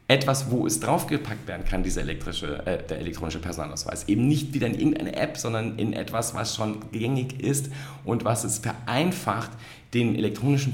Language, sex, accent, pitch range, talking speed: German, male, German, 105-135 Hz, 170 wpm